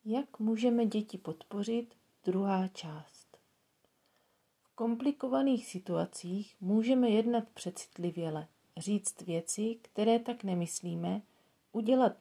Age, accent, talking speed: 40-59, native, 90 wpm